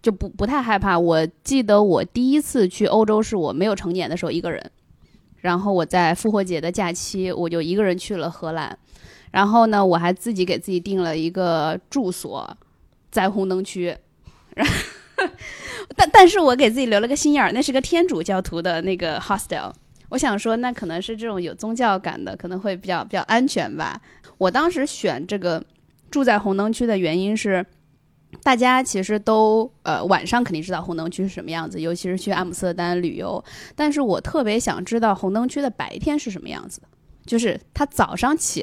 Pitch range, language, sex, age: 175-225 Hz, Chinese, female, 20-39